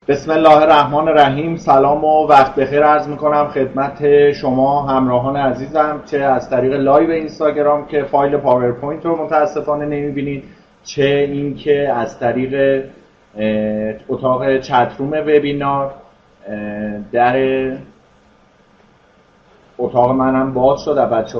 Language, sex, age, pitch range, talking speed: Persian, male, 30-49, 130-145 Hz, 105 wpm